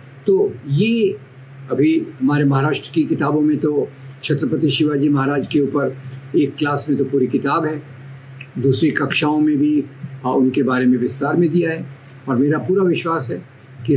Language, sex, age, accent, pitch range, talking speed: Marathi, male, 70-89, native, 135-150 Hz, 165 wpm